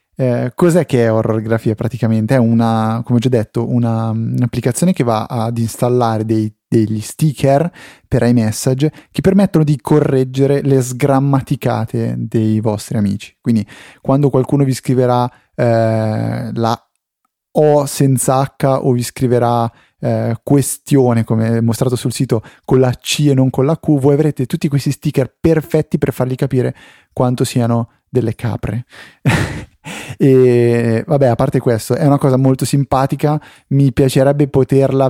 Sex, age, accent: male, 20-39, native